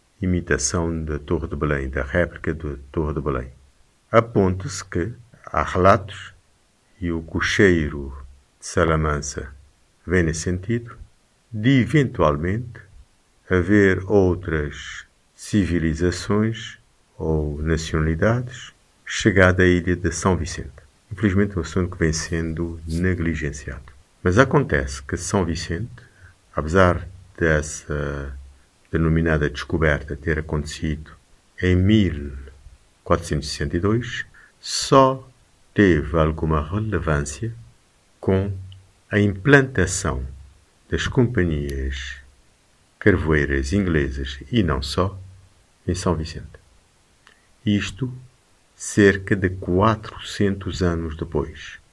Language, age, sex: Portuguese, 50-69, male